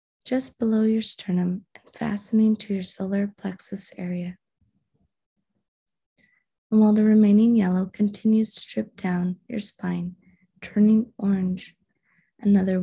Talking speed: 115 wpm